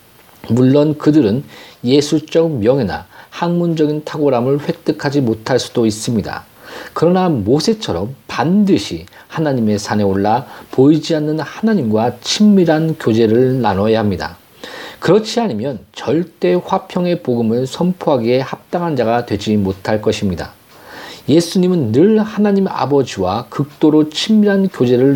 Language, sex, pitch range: Korean, male, 120-170 Hz